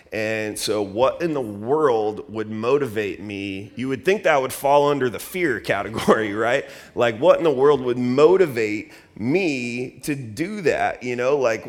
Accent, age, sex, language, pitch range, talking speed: American, 30-49, male, English, 105-125 Hz, 175 wpm